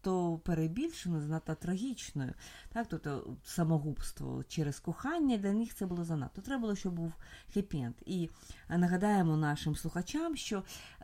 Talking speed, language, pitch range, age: 135 wpm, Ukrainian, 155-205 Hz, 30-49